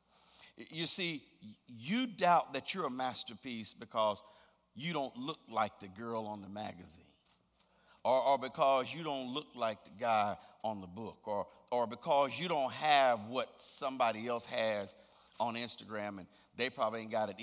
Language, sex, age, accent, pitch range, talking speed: English, male, 50-69, American, 115-180 Hz, 165 wpm